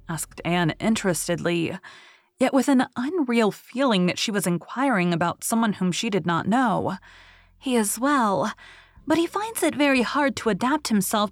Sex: female